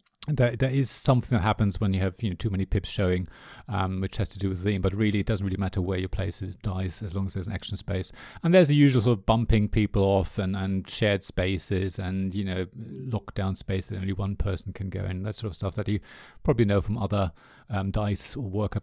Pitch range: 100-120 Hz